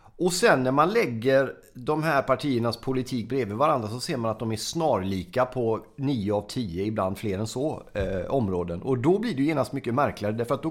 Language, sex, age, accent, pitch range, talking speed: Swedish, male, 30-49, native, 105-140 Hz, 220 wpm